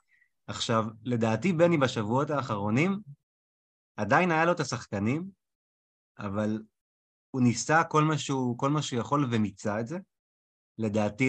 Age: 30-49